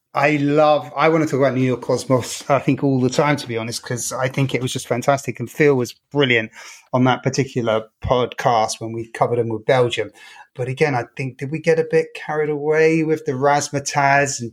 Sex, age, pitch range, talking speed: male, 30-49, 120-145 Hz, 225 wpm